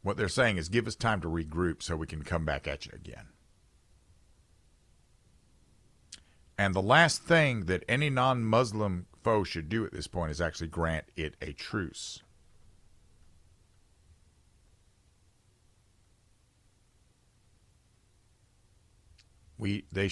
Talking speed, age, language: 115 wpm, 50-69, English